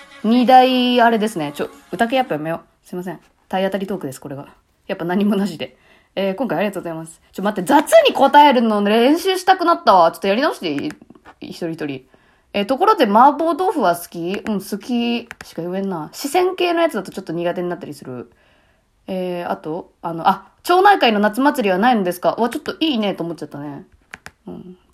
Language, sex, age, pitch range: Japanese, female, 20-39, 175-255 Hz